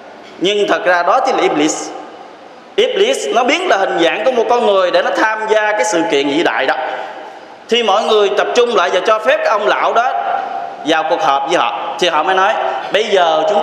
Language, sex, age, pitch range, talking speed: Vietnamese, male, 20-39, 185-275 Hz, 225 wpm